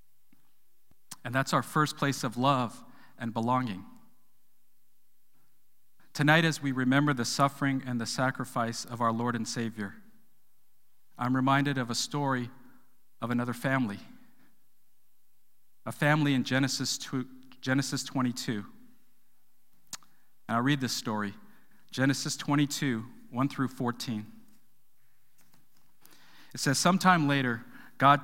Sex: male